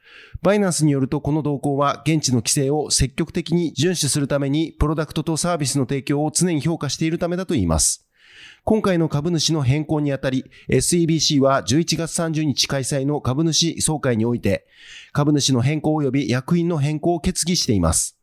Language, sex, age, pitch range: Japanese, male, 30-49, 140-170 Hz